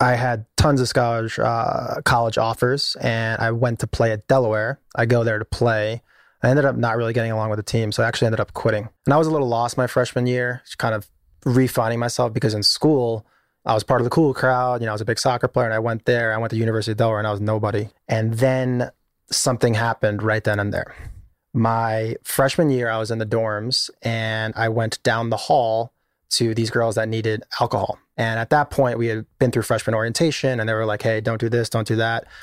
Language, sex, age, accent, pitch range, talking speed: English, male, 20-39, American, 110-125 Hz, 245 wpm